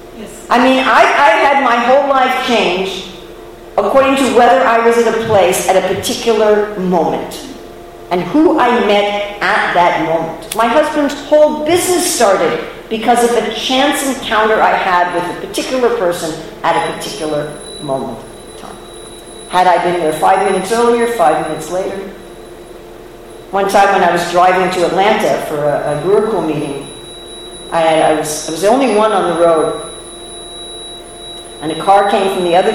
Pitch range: 160-225 Hz